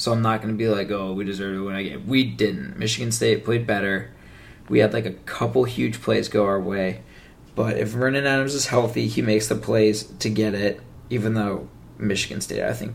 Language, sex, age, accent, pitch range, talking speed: English, male, 20-39, American, 100-125 Hz, 225 wpm